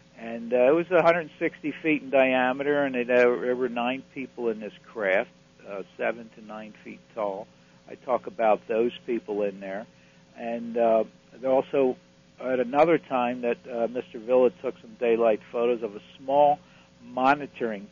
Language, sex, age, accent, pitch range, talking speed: English, male, 60-79, American, 110-135 Hz, 160 wpm